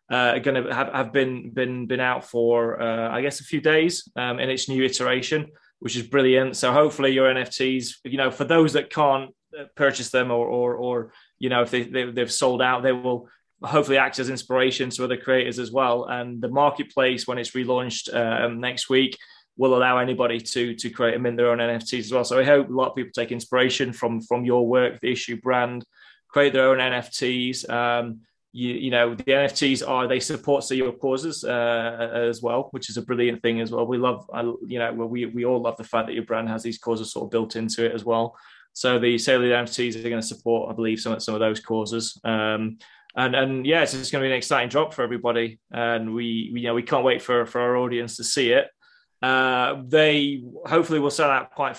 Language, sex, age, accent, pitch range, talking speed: English, male, 20-39, British, 120-130 Hz, 230 wpm